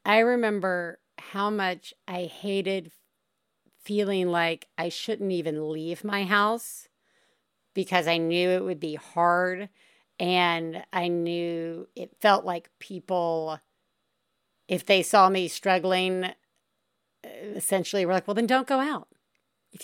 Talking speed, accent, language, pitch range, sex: 125 wpm, American, English, 185-255 Hz, female